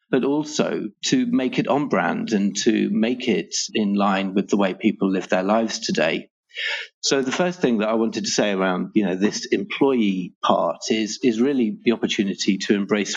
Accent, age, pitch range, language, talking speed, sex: British, 40-59, 100-135 Hz, English, 195 wpm, male